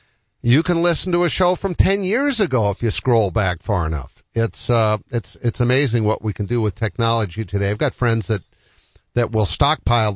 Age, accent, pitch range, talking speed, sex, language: 50-69, American, 110-155 Hz, 205 wpm, male, English